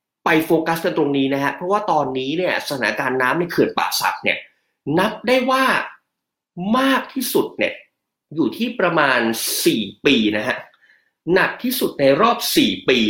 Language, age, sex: Thai, 30-49, male